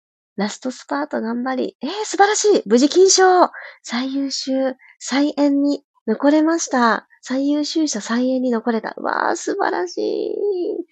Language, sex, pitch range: Japanese, female, 190-270 Hz